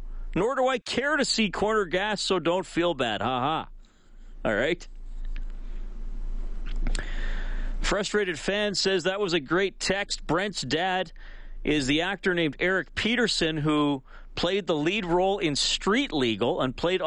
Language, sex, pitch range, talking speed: English, male, 145-190 Hz, 145 wpm